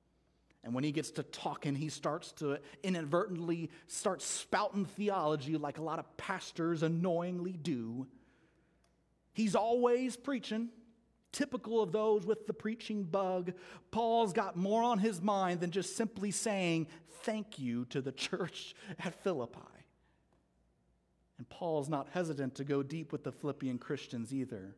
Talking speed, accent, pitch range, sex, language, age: 145 wpm, American, 145-205 Hz, male, English, 40-59